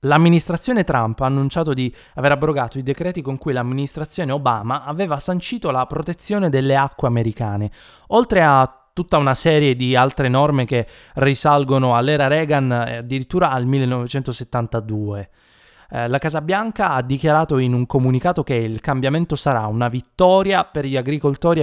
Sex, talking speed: male, 145 wpm